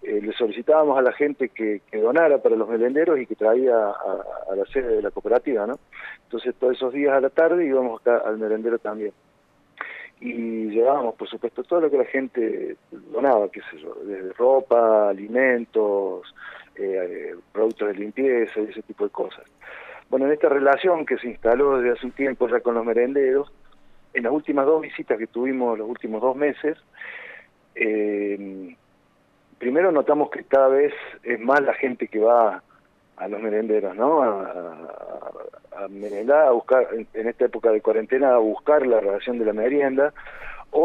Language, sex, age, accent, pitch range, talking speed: Spanish, male, 40-59, Argentinian, 115-155 Hz, 180 wpm